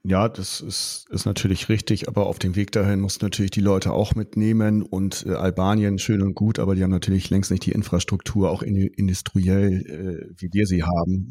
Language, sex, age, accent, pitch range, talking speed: German, male, 40-59, German, 95-105 Hz, 205 wpm